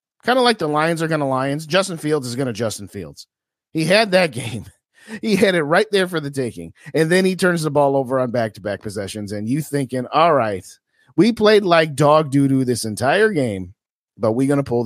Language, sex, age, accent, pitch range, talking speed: English, male, 40-59, American, 105-150 Hz, 225 wpm